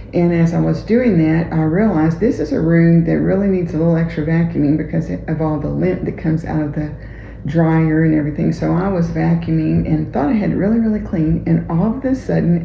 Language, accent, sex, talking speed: English, American, female, 235 wpm